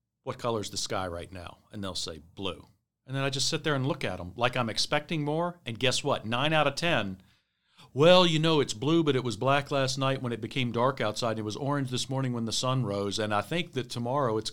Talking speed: 260 wpm